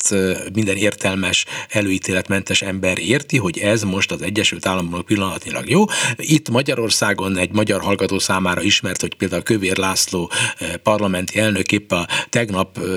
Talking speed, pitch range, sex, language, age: 125 wpm, 105-150 Hz, male, Hungarian, 60-79